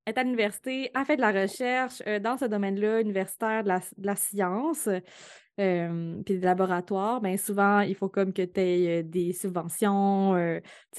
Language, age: French, 20-39